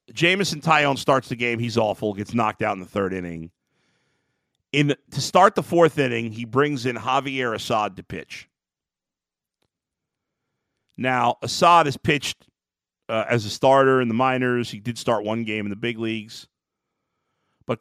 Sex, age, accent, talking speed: male, 50-69, American, 165 wpm